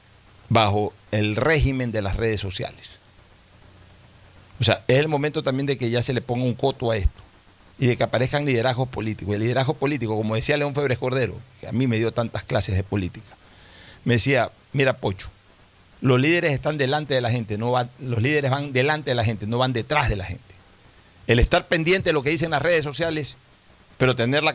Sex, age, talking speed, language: male, 40-59, 205 wpm, Spanish